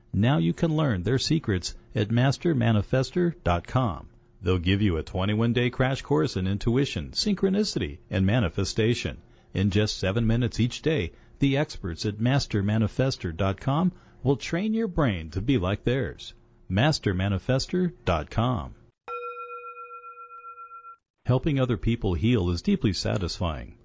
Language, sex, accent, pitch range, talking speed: English, male, American, 95-135 Hz, 115 wpm